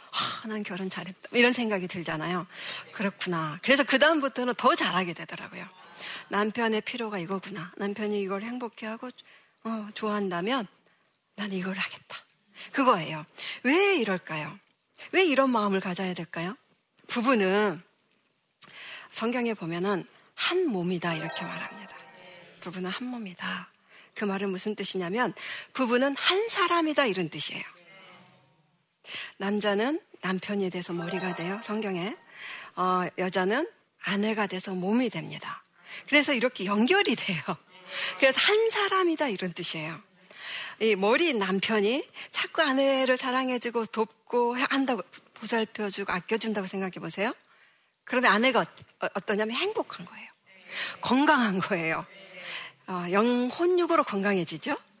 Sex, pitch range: female, 185-250 Hz